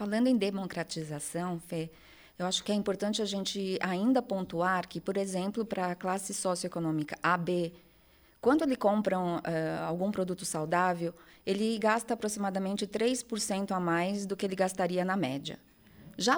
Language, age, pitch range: Portuguese, 20-39, 170-205 Hz